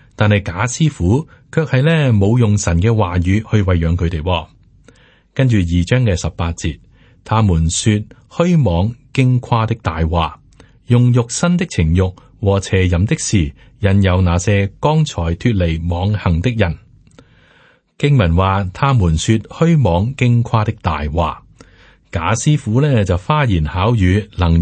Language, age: Chinese, 30-49